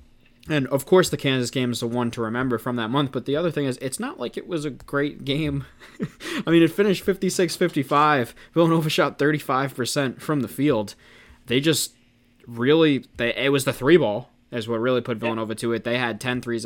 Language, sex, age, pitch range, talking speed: English, male, 20-39, 120-140 Hz, 215 wpm